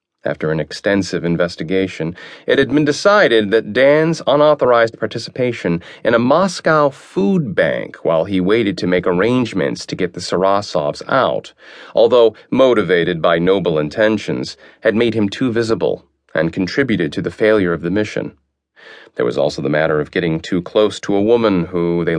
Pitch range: 85-120 Hz